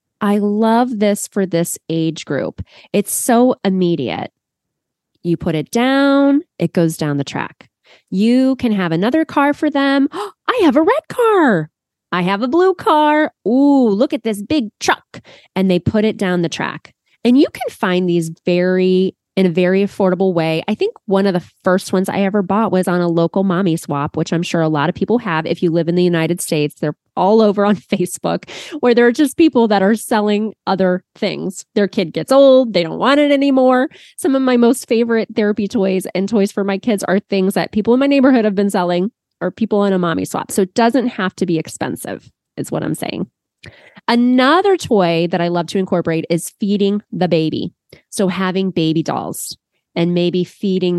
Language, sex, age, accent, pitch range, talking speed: English, female, 20-39, American, 175-240 Hz, 200 wpm